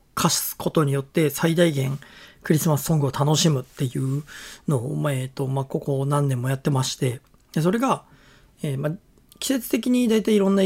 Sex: male